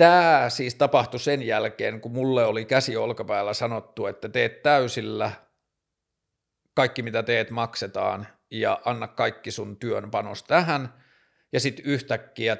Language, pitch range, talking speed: Finnish, 110-135 Hz, 135 wpm